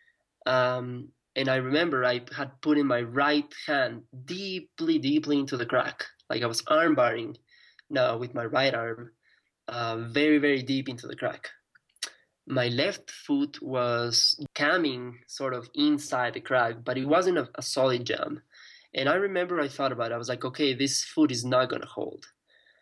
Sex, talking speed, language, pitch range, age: male, 175 wpm, English, 125-155 Hz, 20-39